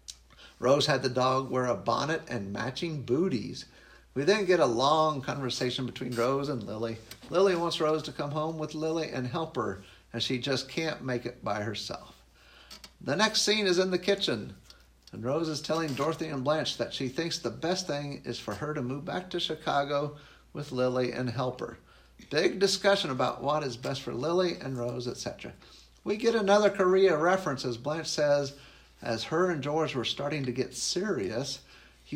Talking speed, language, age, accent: 190 wpm, English, 50-69, American